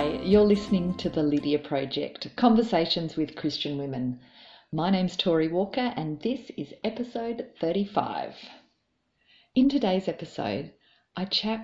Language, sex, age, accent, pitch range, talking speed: English, female, 40-59, Australian, 140-195 Hz, 125 wpm